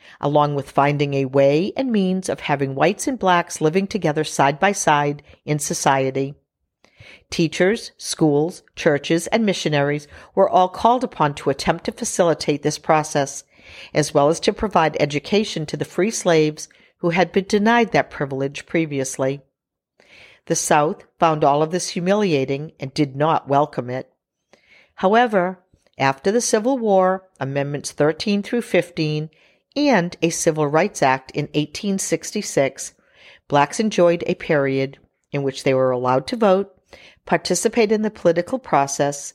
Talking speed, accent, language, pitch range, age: 145 wpm, American, English, 140-190 Hz, 50-69